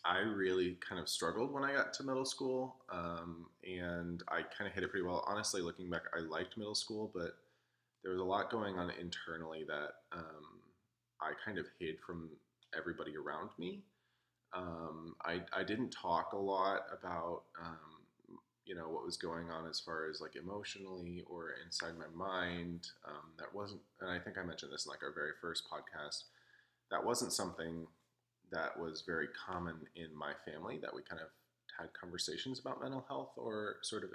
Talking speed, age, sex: 185 wpm, 20-39, male